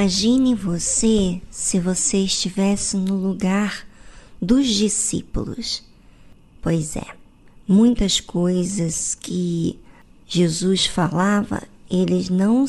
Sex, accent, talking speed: male, Brazilian, 85 wpm